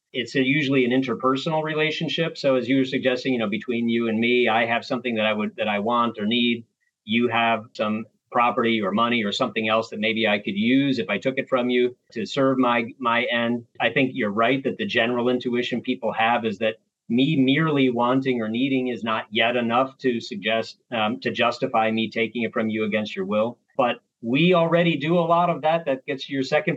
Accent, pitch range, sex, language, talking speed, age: American, 115-135 Hz, male, English, 225 wpm, 40-59